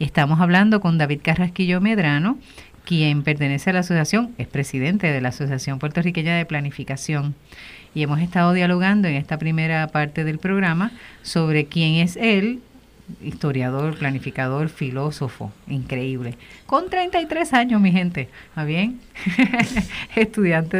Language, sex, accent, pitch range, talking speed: Spanish, female, American, 150-180 Hz, 130 wpm